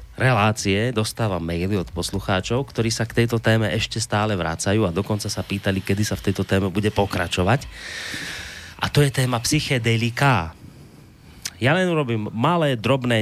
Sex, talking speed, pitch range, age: male, 155 wpm, 105-145 Hz, 30-49